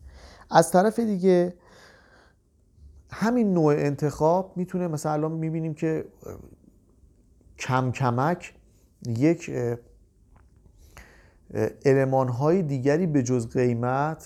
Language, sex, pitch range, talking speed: Persian, male, 110-135 Hz, 80 wpm